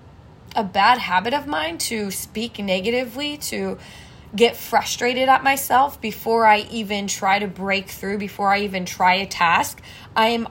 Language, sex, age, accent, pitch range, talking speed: English, female, 20-39, American, 210-240 Hz, 160 wpm